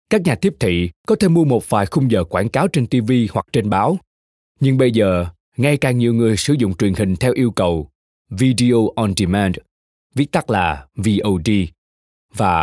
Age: 20-39